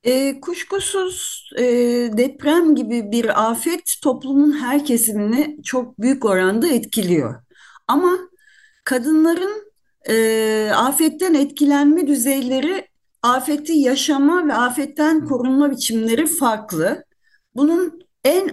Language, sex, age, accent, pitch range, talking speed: Turkish, female, 50-69, native, 240-320 Hz, 95 wpm